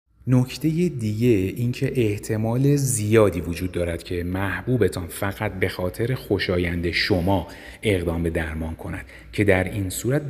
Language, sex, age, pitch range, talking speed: Persian, male, 30-49, 90-115 Hz, 135 wpm